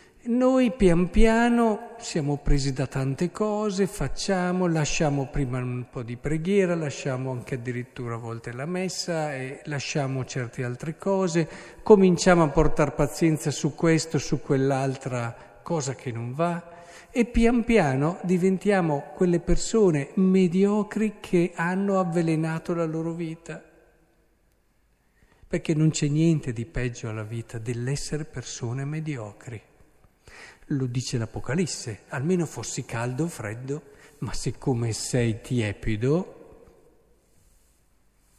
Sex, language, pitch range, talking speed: male, Italian, 125-170 Hz, 115 wpm